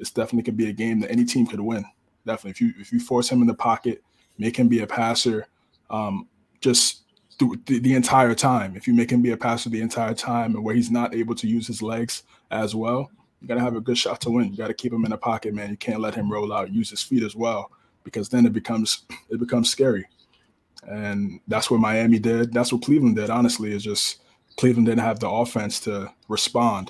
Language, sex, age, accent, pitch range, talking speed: English, male, 20-39, American, 115-125 Hz, 245 wpm